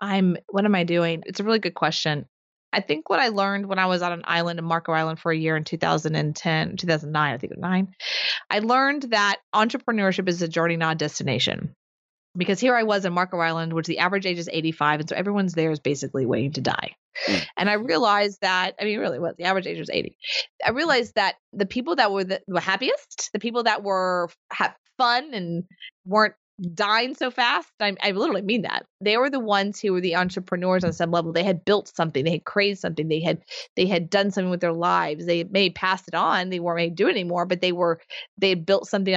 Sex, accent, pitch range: female, American, 170-205 Hz